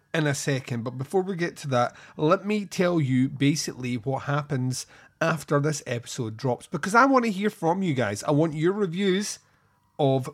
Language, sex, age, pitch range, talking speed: English, male, 30-49, 125-165 Hz, 190 wpm